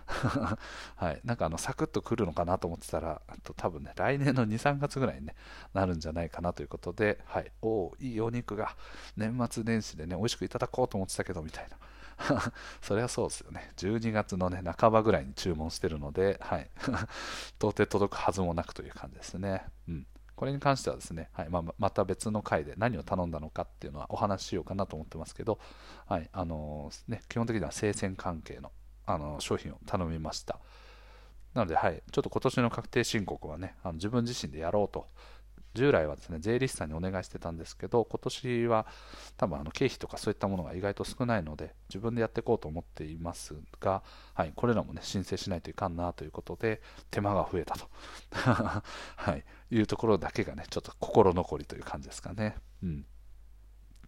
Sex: male